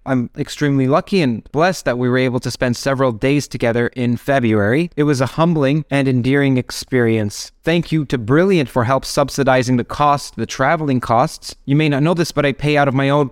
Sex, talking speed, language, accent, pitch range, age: male, 210 wpm, English, American, 125-150 Hz, 20-39